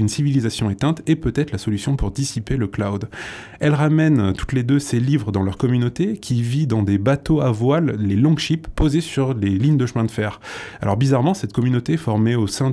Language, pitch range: French, 110-145 Hz